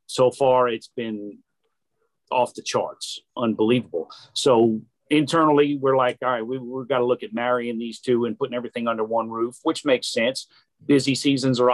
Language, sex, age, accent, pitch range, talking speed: English, male, 50-69, American, 120-140 Hz, 180 wpm